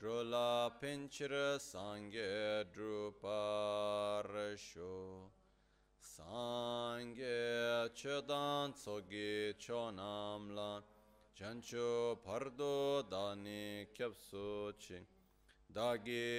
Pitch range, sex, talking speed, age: 100-120 Hz, male, 50 wpm, 30-49